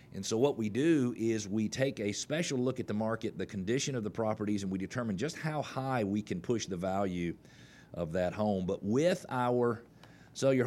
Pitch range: 100-125 Hz